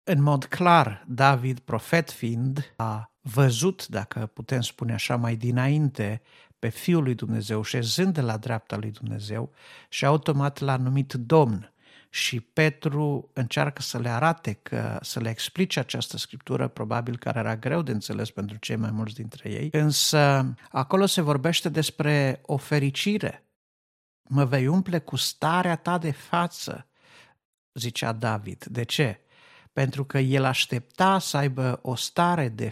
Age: 50-69